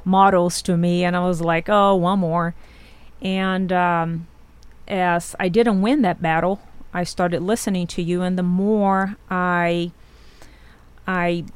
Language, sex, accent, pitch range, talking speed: English, female, American, 180-225 Hz, 145 wpm